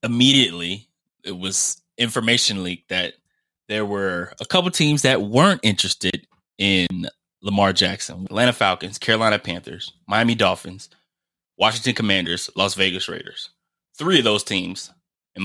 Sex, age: male, 20-39